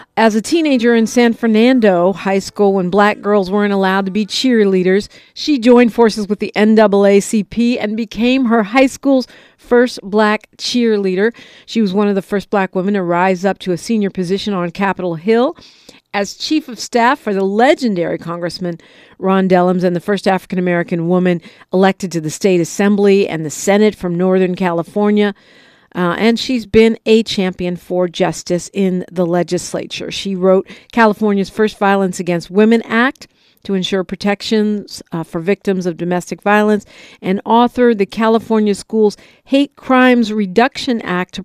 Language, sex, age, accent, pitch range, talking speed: English, female, 50-69, American, 190-230 Hz, 165 wpm